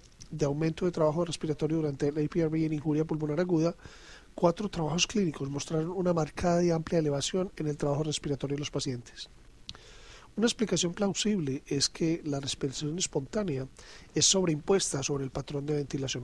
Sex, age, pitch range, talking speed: male, 40-59, 145-175 Hz, 160 wpm